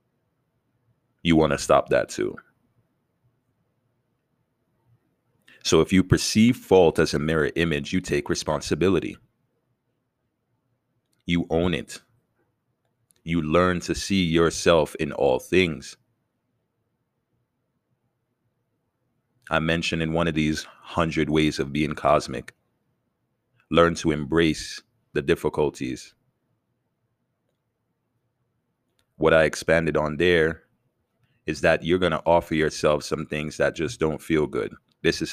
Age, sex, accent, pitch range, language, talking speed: 30-49, male, American, 75-120 Hz, English, 110 wpm